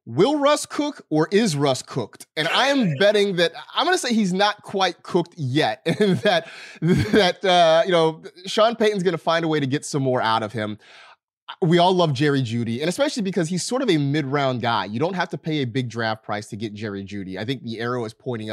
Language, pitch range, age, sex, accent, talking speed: English, 120-175 Hz, 30-49, male, American, 240 wpm